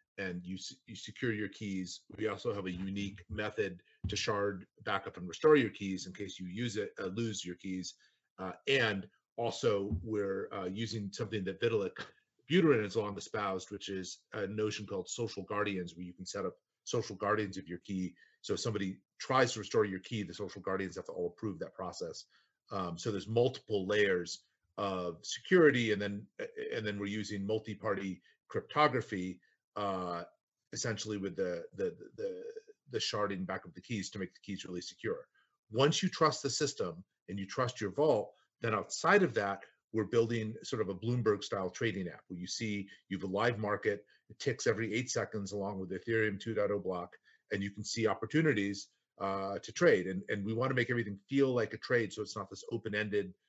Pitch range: 95-115 Hz